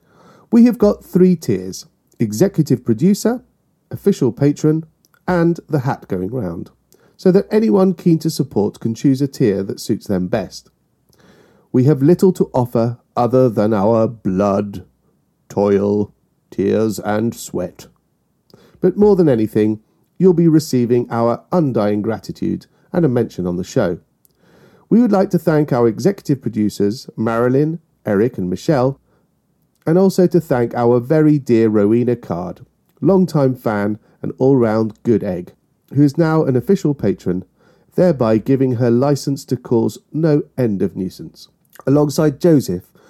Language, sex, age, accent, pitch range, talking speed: English, male, 40-59, British, 110-160 Hz, 140 wpm